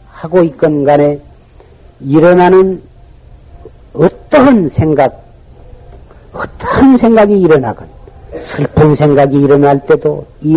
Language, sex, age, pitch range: Korean, male, 50-69, 150-195 Hz